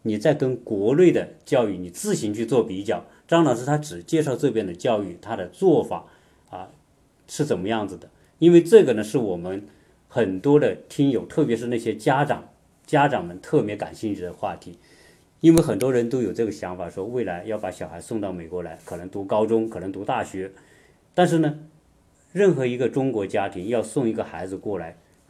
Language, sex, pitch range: Chinese, male, 95-140 Hz